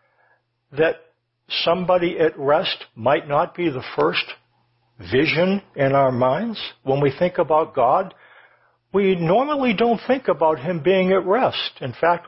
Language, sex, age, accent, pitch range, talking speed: English, male, 60-79, American, 140-180 Hz, 140 wpm